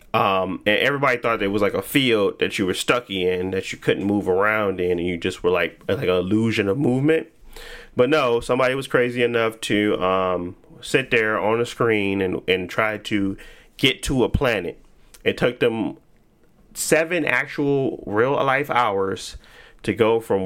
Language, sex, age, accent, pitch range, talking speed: English, male, 30-49, American, 95-125 Hz, 180 wpm